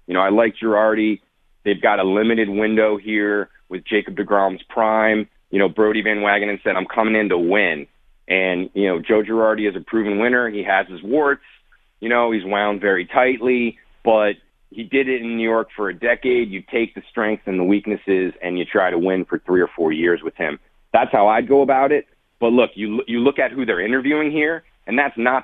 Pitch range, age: 95-115 Hz, 30-49